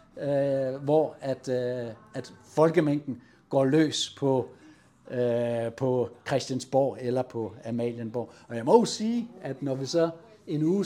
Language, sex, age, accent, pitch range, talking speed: Danish, male, 60-79, native, 125-155 Hz, 145 wpm